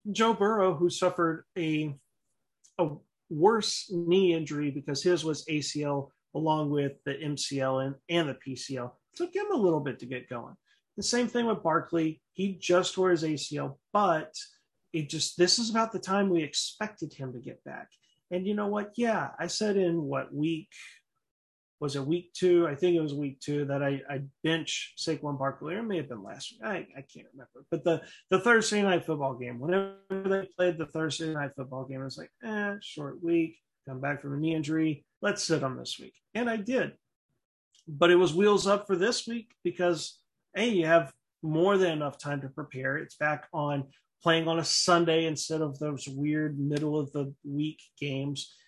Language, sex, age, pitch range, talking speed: English, male, 30-49, 145-185 Hz, 195 wpm